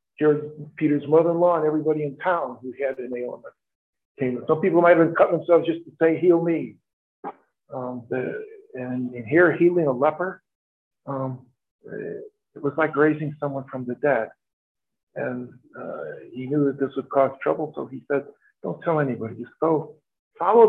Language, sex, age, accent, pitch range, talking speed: English, male, 50-69, American, 125-160 Hz, 160 wpm